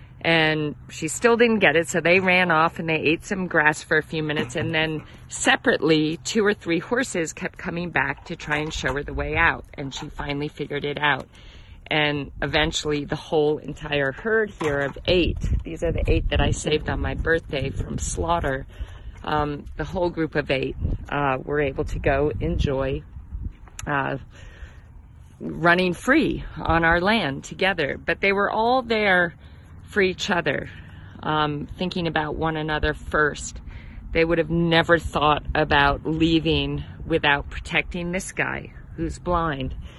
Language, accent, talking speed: English, American, 165 wpm